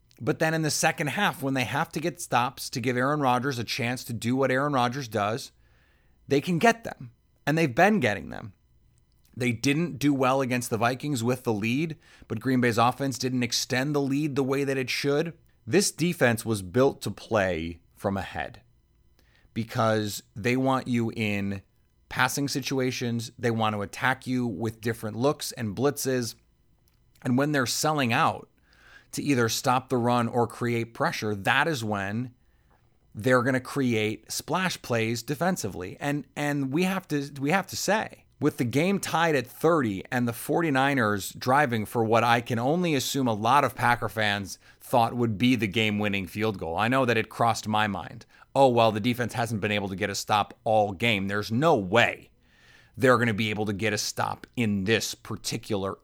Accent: American